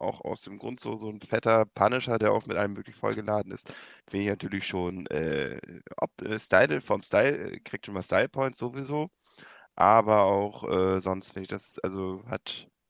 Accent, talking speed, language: German, 190 wpm, German